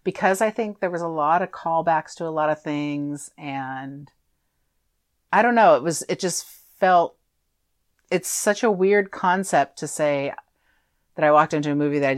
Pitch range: 140-180 Hz